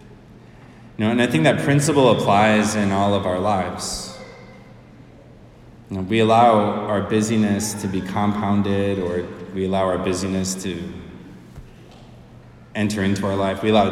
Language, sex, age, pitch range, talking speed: English, male, 20-39, 95-105 Hz, 145 wpm